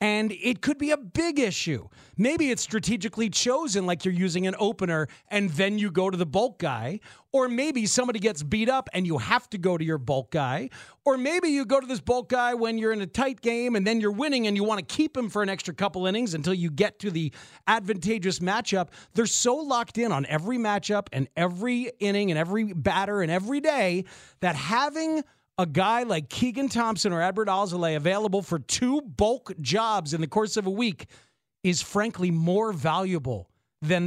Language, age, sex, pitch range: English, 30-49, male, 170-235 Hz